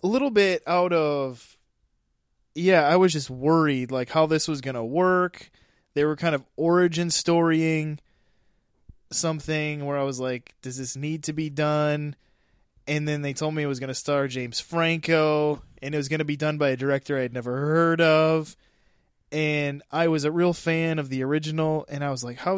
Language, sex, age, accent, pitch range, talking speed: English, male, 20-39, American, 135-165 Hz, 200 wpm